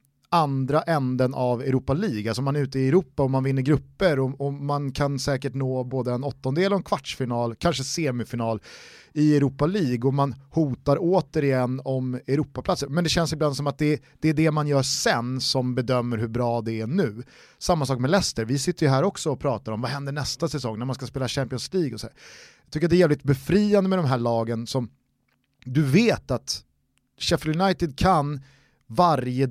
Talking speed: 205 wpm